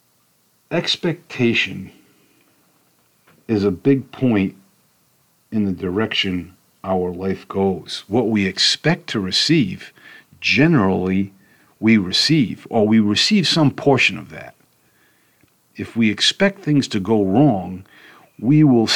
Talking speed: 110 wpm